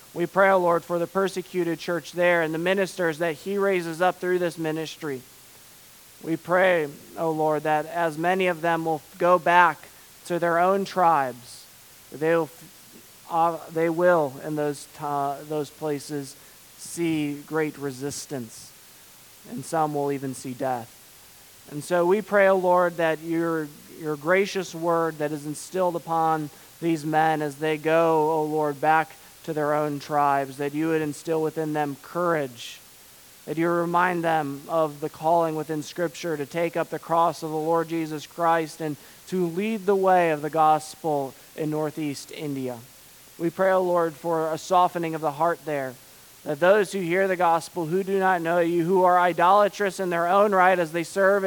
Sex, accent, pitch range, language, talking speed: male, American, 150-175 Hz, English, 180 wpm